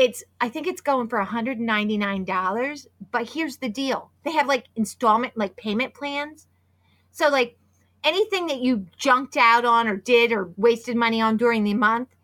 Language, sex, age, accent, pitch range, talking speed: English, female, 30-49, American, 210-275 Hz, 165 wpm